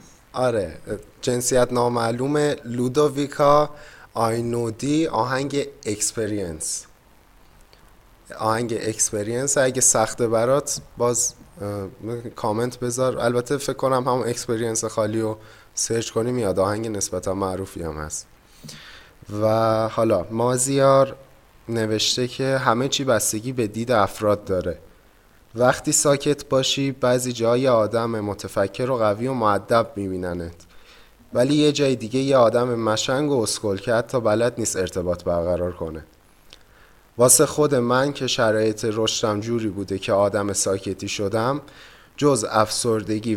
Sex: male